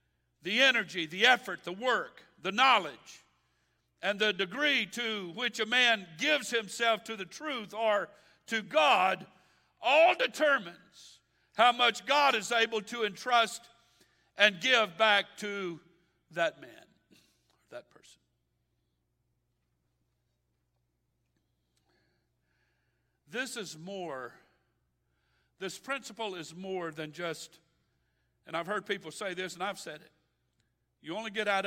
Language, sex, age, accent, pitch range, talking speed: English, male, 60-79, American, 130-220 Hz, 120 wpm